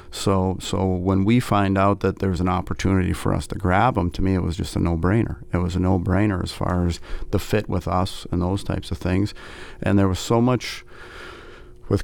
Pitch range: 90-100 Hz